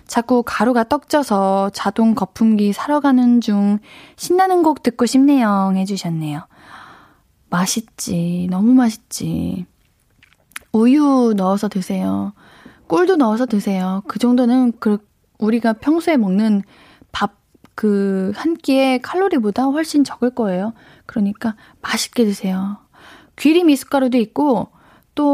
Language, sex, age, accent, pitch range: Korean, female, 20-39, native, 205-280 Hz